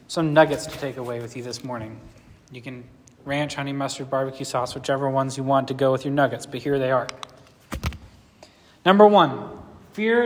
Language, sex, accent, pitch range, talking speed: English, male, American, 140-195 Hz, 185 wpm